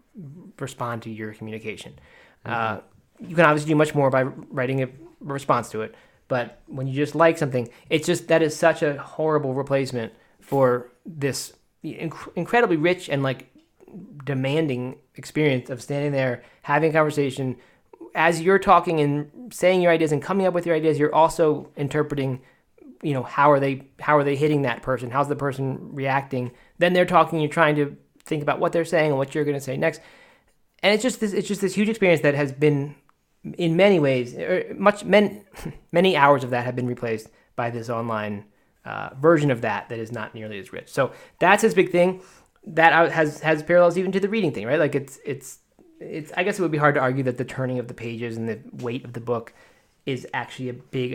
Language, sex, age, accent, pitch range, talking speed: English, male, 20-39, American, 125-165 Hz, 205 wpm